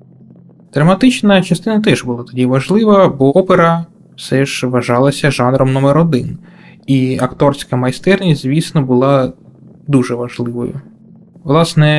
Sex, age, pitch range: male, 20-39, 125-170 Hz